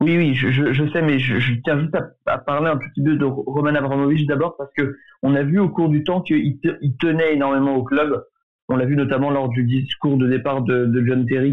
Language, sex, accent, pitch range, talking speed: French, male, French, 125-155 Hz, 255 wpm